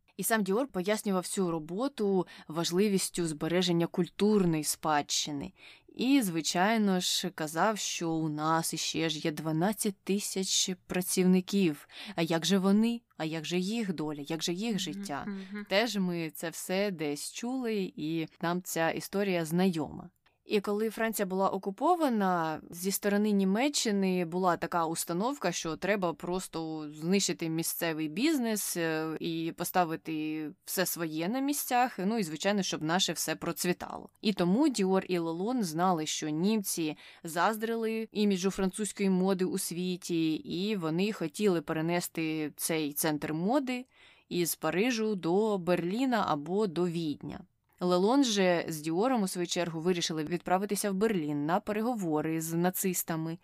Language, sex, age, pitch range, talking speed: Ukrainian, female, 20-39, 165-205 Hz, 135 wpm